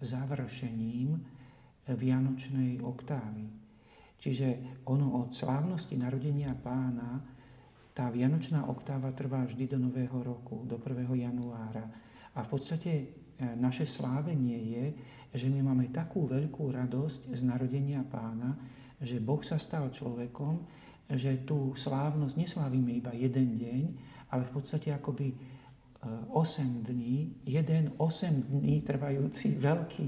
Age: 50-69